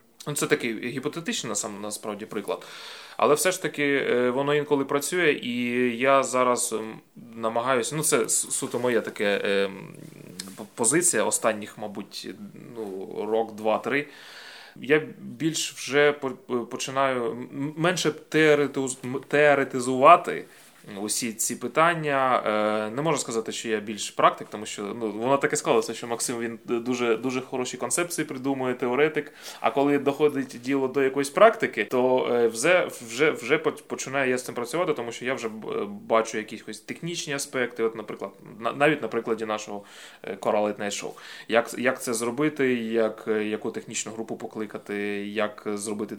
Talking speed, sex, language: 125 wpm, male, Ukrainian